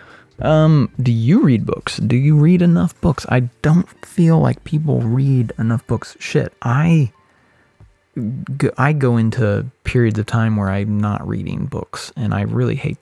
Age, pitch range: 20-39, 100-130 Hz